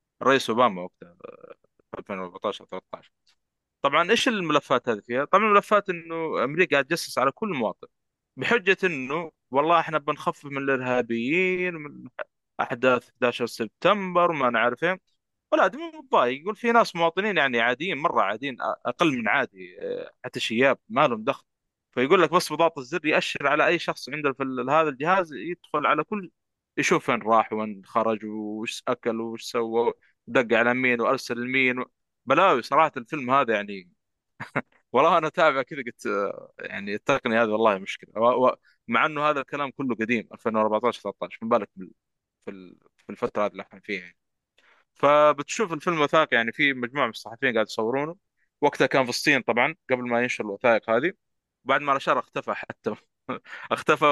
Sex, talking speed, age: male, 155 wpm, 30-49